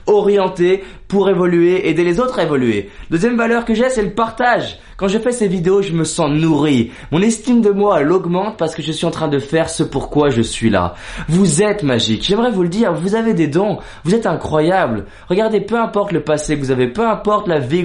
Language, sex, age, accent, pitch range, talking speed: French, male, 20-39, French, 150-200 Hz, 230 wpm